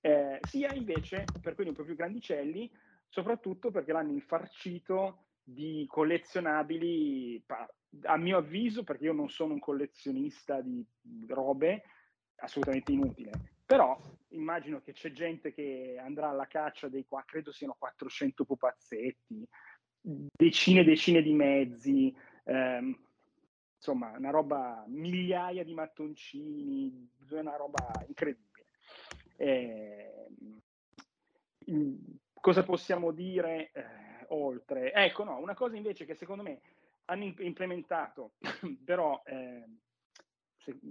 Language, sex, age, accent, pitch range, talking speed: Italian, male, 30-49, native, 140-195 Hz, 115 wpm